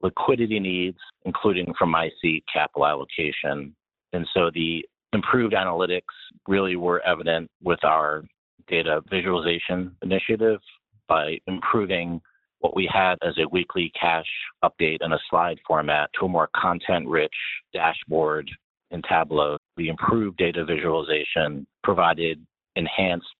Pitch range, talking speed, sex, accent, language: 80-95 Hz, 120 wpm, male, American, English